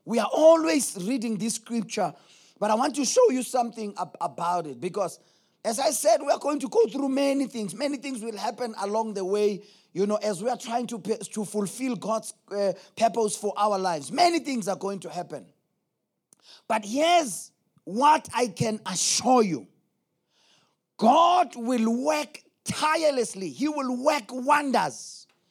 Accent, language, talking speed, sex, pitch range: South African, English, 170 wpm, male, 220-295 Hz